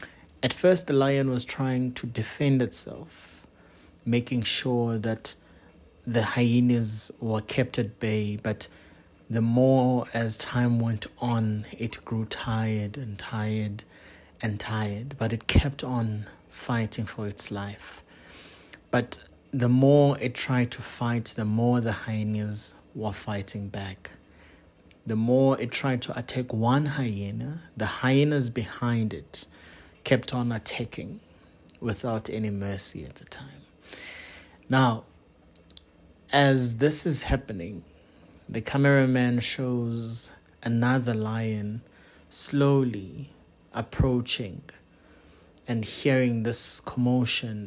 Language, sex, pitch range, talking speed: English, male, 105-125 Hz, 115 wpm